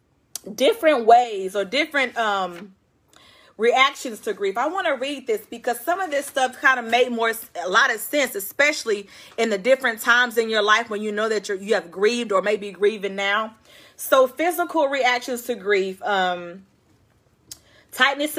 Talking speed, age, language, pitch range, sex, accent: 175 wpm, 30-49, English, 210-265 Hz, female, American